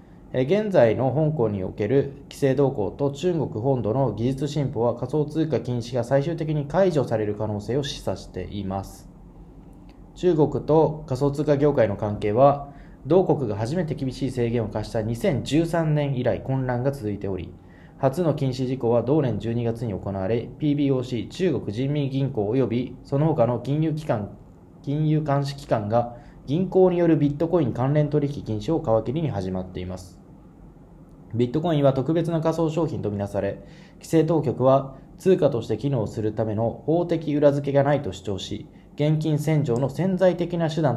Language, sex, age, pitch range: Japanese, male, 20-39, 115-155 Hz